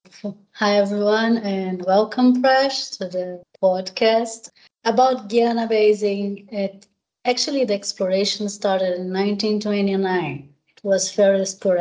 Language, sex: English, female